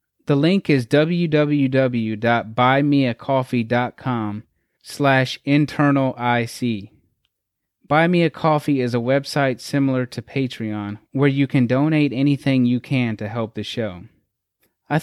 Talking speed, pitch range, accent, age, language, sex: 115 wpm, 115-145 Hz, American, 20-39, English, male